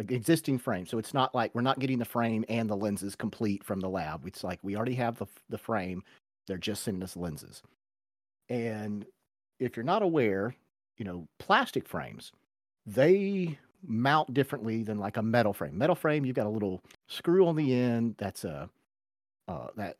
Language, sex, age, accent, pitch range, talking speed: English, male, 40-59, American, 105-145 Hz, 185 wpm